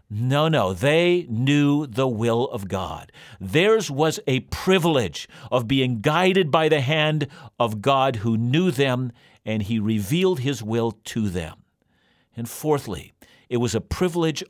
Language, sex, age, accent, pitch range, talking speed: English, male, 50-69, American, 115-165 Hz, 150 wpm